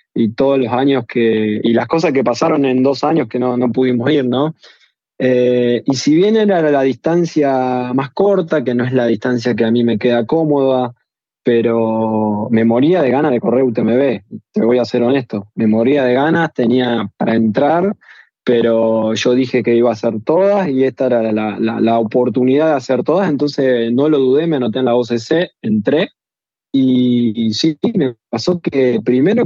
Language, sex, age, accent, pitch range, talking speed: Spanish, male, 20-39, Argentinian, 115-140 Hz, 190 wpm